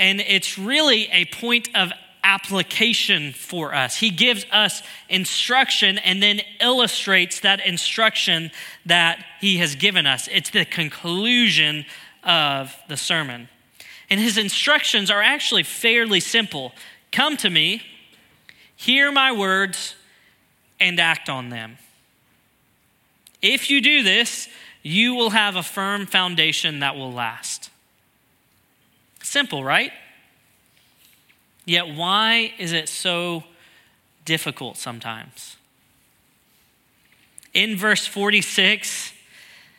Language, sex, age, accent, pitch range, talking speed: English, male, 20-39, American, 160-215 Hz, 105 wpm